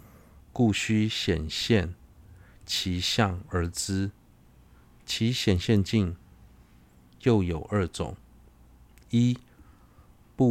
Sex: male